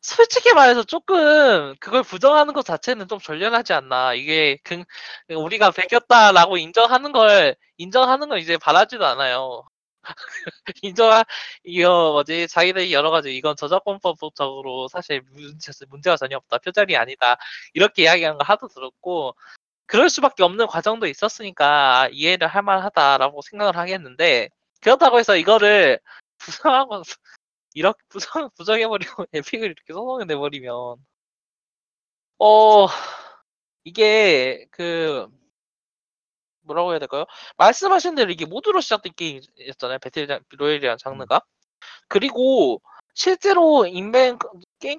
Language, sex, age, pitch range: Korean, male, 20-39, 150-230 Hz